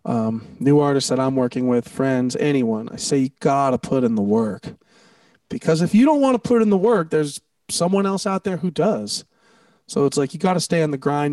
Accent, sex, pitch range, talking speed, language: American, male, 135-215 Hz, 215 wpm, English